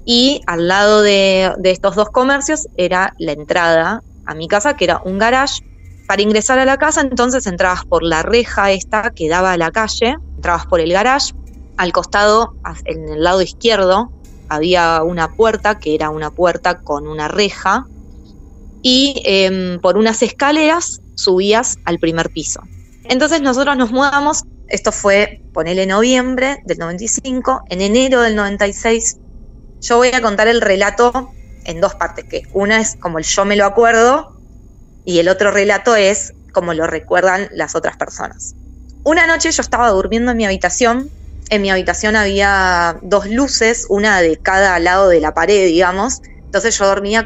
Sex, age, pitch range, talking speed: female, 20-39, 175-230 Hz, 165 wpm